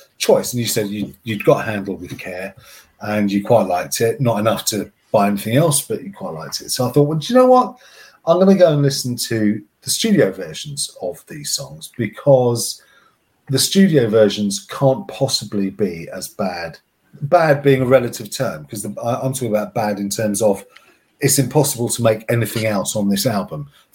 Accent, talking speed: British, 195 wpm